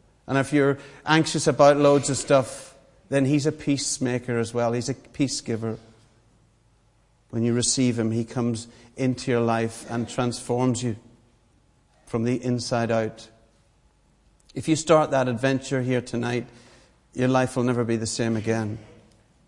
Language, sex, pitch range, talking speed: English, male, 115-140 Hz, 150 wpm